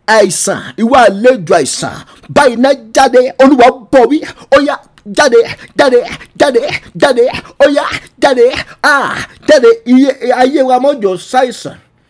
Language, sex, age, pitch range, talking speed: English, male, 50-69, 245-295 Hz, 110 wpm